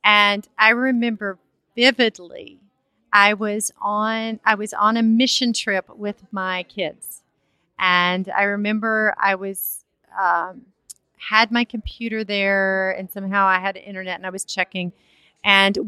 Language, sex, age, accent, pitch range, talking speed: English, female, 30-49, American, 195-225 Hz, 140 wpm